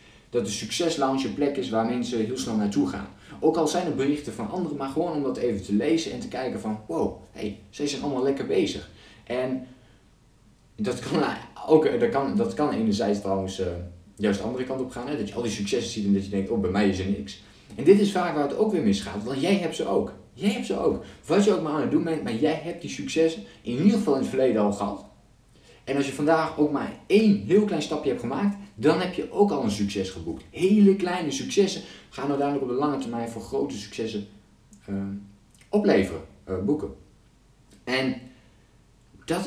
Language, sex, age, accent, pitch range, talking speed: Dutch, male, 20-39, Dutch, 105-150 Hz, 215 wpm